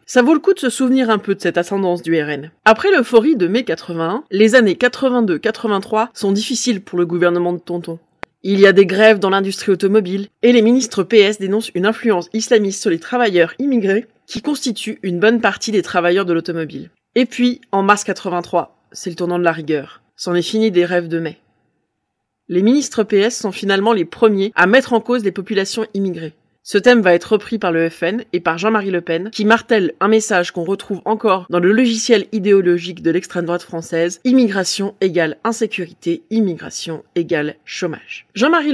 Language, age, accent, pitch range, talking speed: French, 20-39, French, 175-230 Hz, 195 wpm